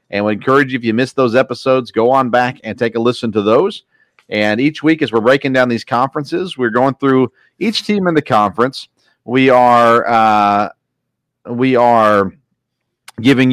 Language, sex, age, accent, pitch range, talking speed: English, male, 40-59, American, 110-140 Hz, 180 wpm